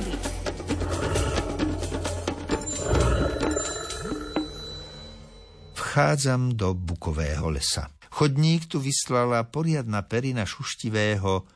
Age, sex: 60-79, male